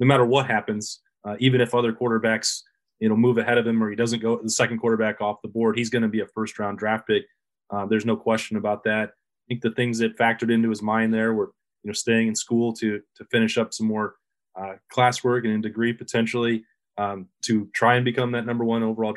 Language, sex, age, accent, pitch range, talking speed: English, male, 20-39, American, 110-120 Hz, 235 wpm